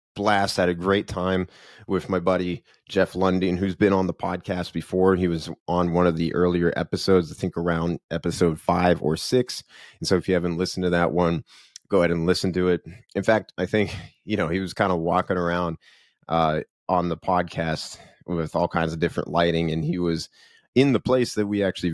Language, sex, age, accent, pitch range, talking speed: English, male, 30-49, American, 85-105 Hz, 210 wpm